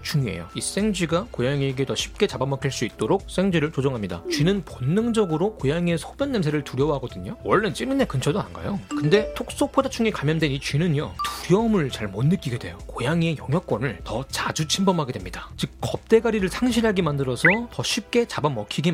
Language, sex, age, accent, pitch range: Korean, male, 30-49, native, 140-215 Hz